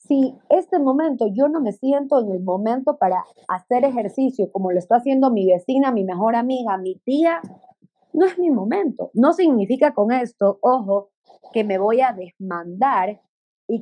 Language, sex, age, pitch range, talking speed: Spanish, female, 30-49, 200-265 Hz, 170 wpm